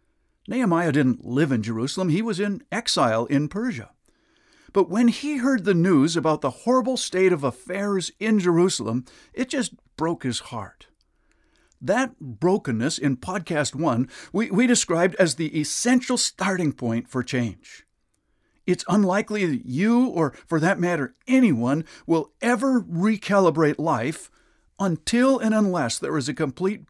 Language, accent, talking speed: English, American, 145 wpm